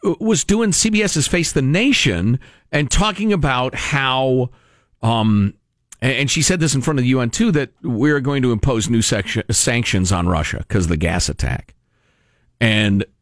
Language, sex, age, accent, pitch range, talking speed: English, male, 50-69, American, 120-195 Hz, 165 wpm